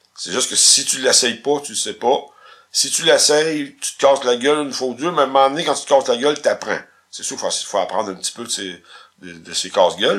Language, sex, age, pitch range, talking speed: French, male, 60-79, 95-140 Hz, 305 wpm